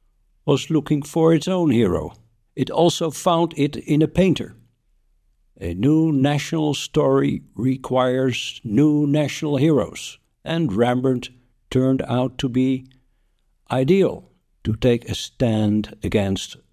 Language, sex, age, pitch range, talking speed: English, male, 60-79, 105-145 Hz, 120 wpm